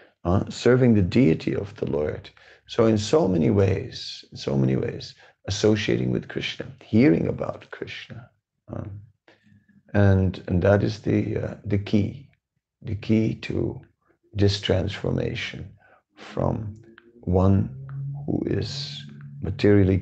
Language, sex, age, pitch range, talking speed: English, male, 50-69, 95-120 Hz, 125 wpm